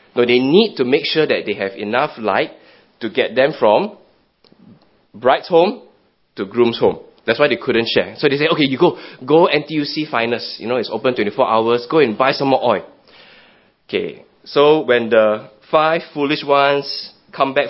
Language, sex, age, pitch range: English, male, 20-39, 110-150 Hz